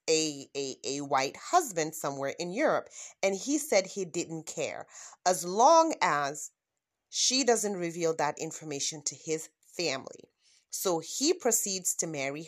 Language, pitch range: English, 160-245 Hz